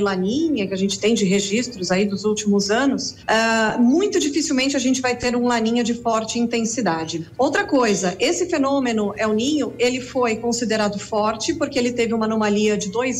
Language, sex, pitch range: Portuguese, female, 225-290 Hz